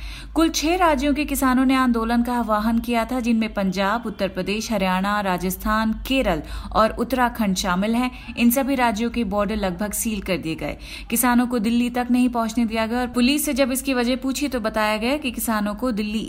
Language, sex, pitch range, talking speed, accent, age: Hindi, female, 200-250 Hz, 195 wpm, native, 30-49